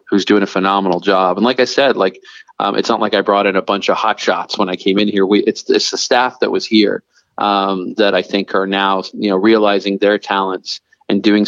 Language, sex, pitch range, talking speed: English, male, 95-110 Hz, 250 wpm